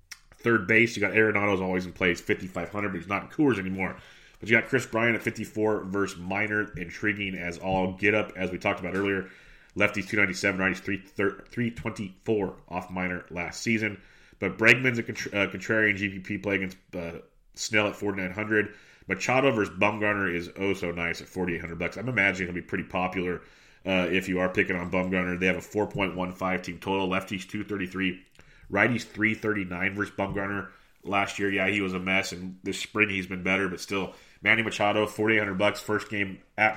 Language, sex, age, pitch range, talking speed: English, male, 30-49, 95-105 Hz, 185 wpm